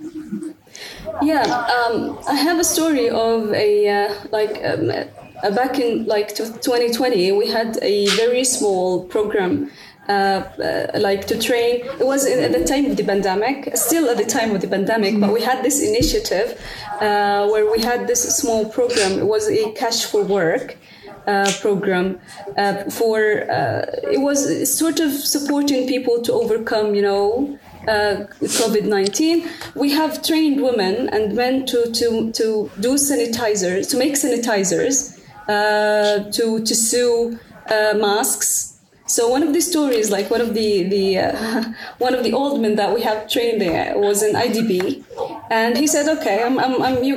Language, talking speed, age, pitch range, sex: English, 165 wpm, 20-39, 210-270 Hz, female